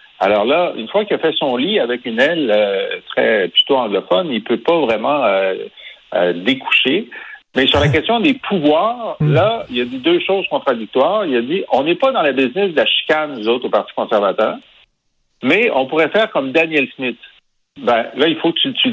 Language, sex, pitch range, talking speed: French, male, 125-200 Hz, 215 wpm